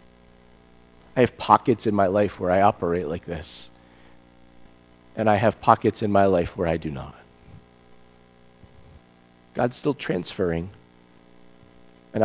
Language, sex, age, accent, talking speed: English, male, 40-59, American, 125 wpm